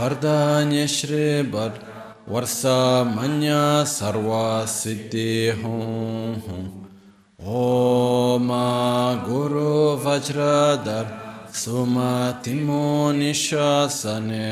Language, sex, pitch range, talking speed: Italian, male, 110-145 Hz, 50 wpm